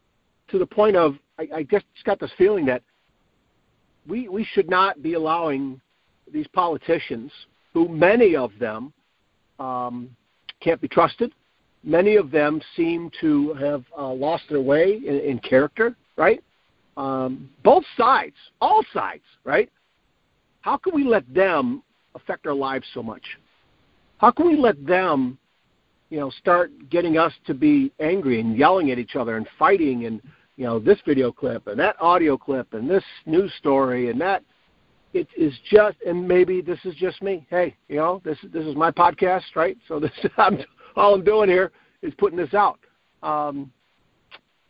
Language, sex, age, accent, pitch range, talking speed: English, male, 50-69, American, 140-200 Hz, 165 wpm